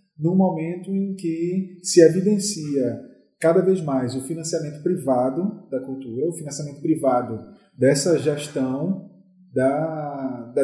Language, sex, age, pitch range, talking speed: Portuguese, male, 20-39, 140-185 Hz, 120 wpm